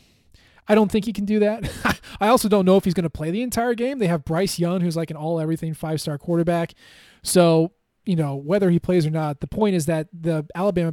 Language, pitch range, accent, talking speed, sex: English, 155-200 Hz, American, 235 wpm, male